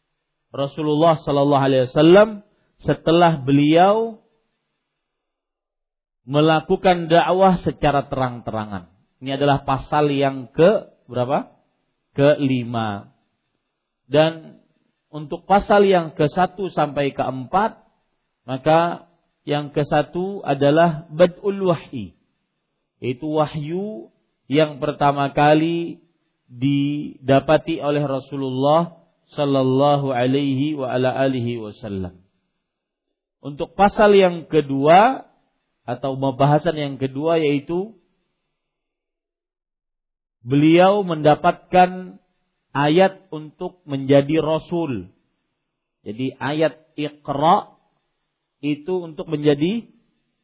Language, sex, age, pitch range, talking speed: Malay, male, 40-59, 135-170 Hz, 75 wpm